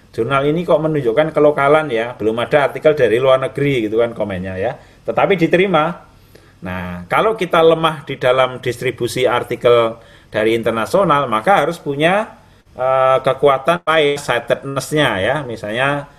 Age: 30-49